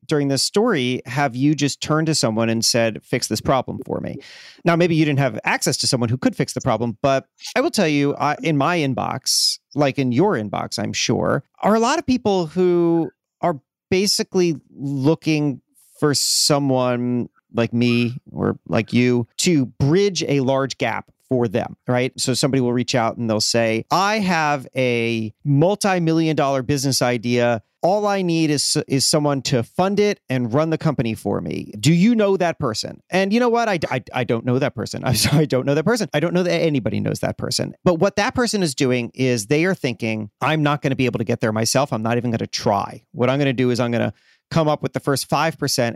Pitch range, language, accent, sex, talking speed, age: 125-170 Hz, English, American, male, 220 wpm, 40-59